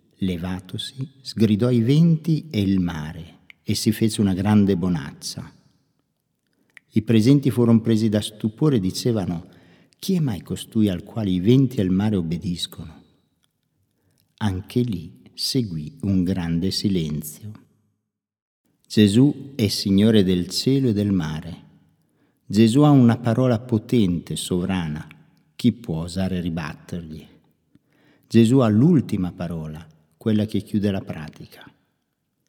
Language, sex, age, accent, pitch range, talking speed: Italian, male, 50-69, native, 90-125 Hz, 120 wpm